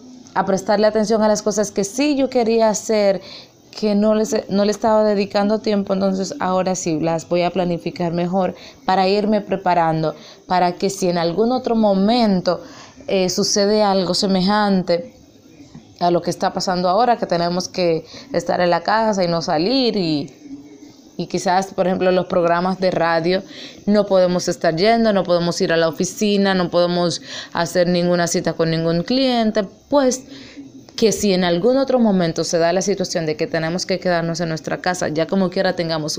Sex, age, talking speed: female, 20-39, 175 wpm